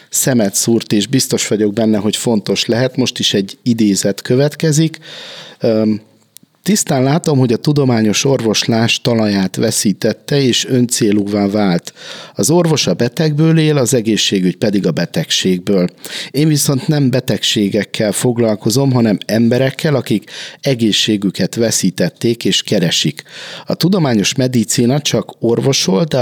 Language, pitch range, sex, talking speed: Hungarian, 105-135 Hz, male, 120 wpm